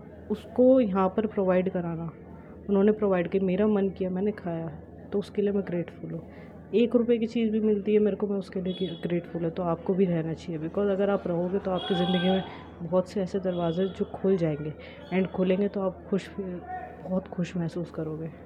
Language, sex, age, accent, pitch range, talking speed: Hindi, female, 20-39, native, 175-205 Hz, 200 wpm